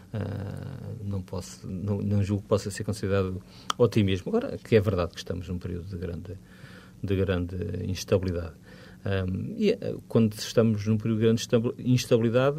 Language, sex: Portuguese, male